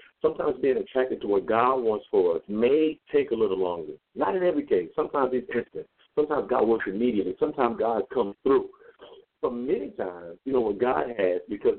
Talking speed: 195 wpm